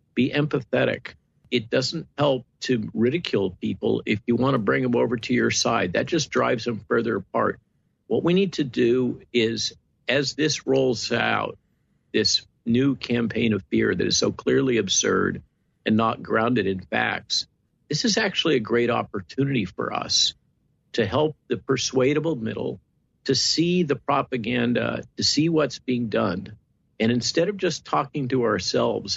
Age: 50-69